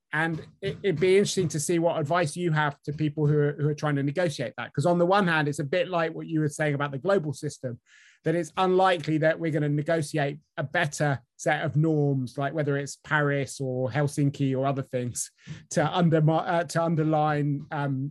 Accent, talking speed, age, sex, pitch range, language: British, 215 wpm, 30-49, male, 145-170 Hz, English